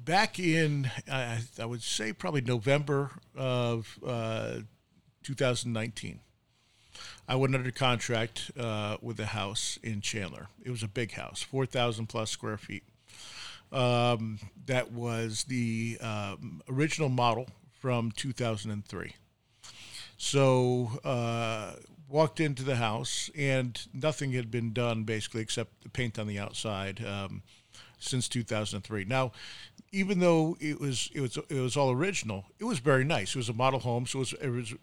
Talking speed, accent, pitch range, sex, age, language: 145 wpm, American, 110-130 Hz, male, 50-69, English